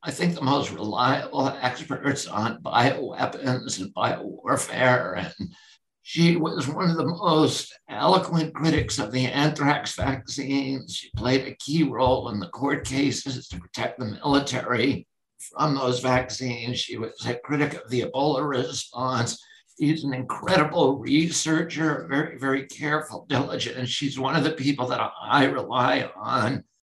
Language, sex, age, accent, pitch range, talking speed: English, male, 60-79, American, 125-150 Hz, 145 wpm